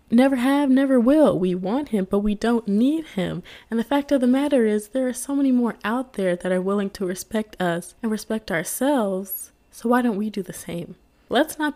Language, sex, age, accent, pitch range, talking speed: English, female, 20-39, American, 180-245 Hz, 225 wpm